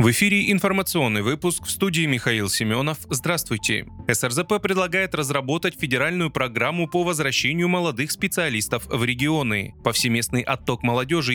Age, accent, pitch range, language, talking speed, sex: 20-39, native, 120-175 Hz, Russian, 120 wpm, male